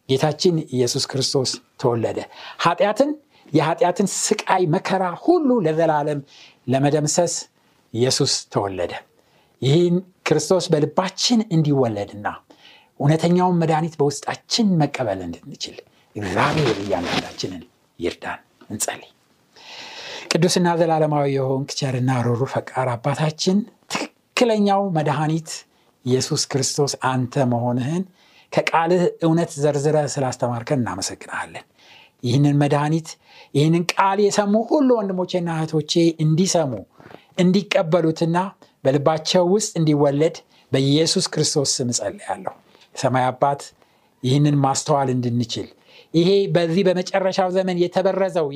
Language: Amharic